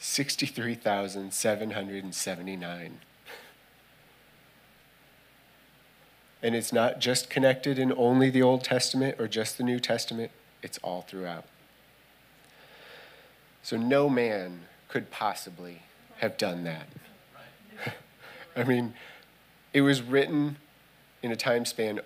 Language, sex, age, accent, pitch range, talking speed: English, male, 30-49, American, 95-125 Hz, 100 wpm